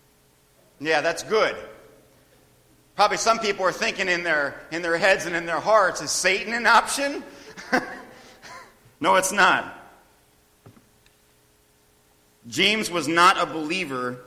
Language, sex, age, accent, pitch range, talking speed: English, male, 40-59, American, 150-215 Hz, 120 wpm